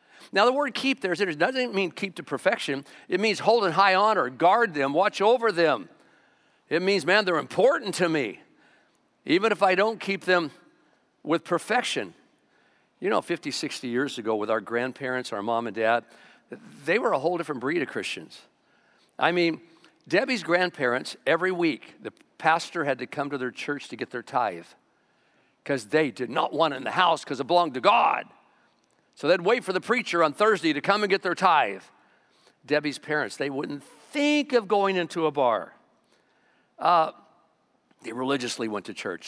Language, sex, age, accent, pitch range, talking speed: English, male, 50-69, American, 135-190 Hz, 180 wpm